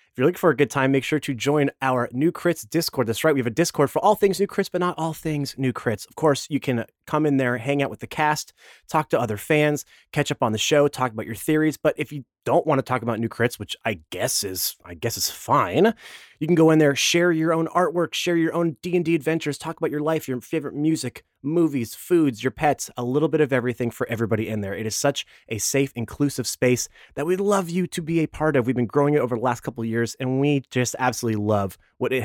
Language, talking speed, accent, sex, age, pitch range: English, 265 wpm, American, male, 30-49, 120-165 Hz